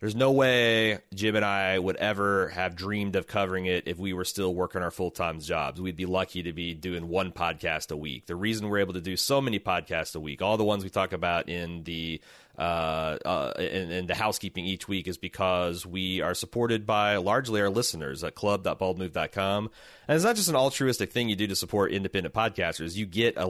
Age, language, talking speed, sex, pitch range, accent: 30-49, English, 215 wpm, male, 95-110 Hz, American